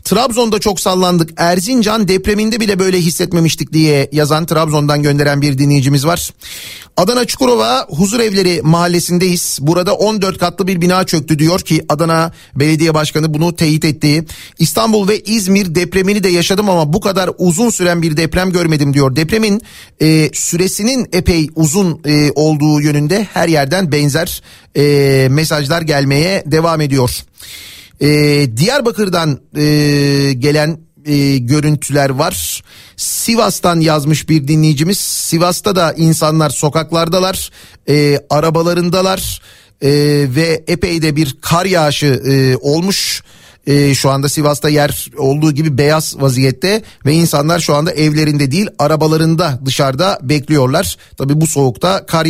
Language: Turkish